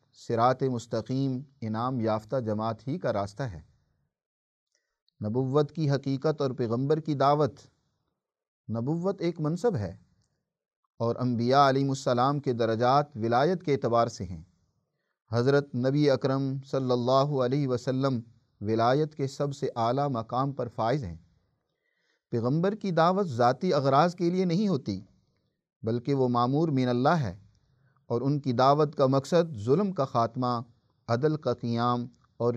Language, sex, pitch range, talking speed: Urdu, male, 120-150 Hz, 140 wpm